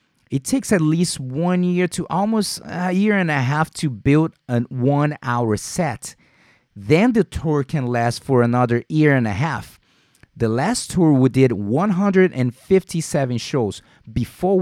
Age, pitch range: 30-49, 120-160 Hz